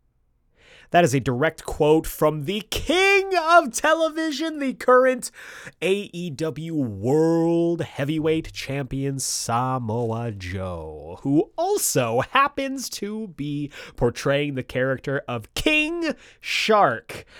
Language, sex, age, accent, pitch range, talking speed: English, male, 30-49, American, 110-170 Hz, 100 wpm